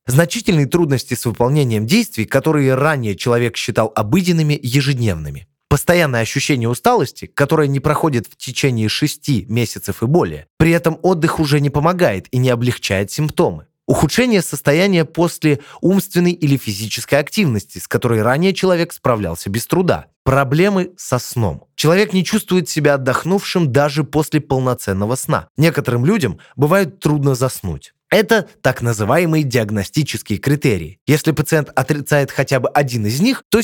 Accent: native